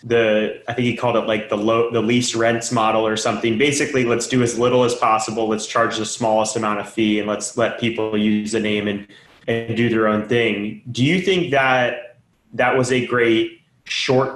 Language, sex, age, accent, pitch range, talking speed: English, male, 20-39, American, 110-125 Hz, 215 wpm